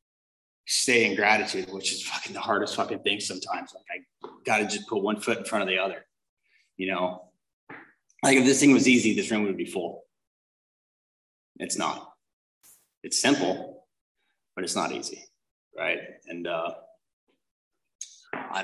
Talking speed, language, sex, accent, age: 155 wpm, English, male, American, 30-49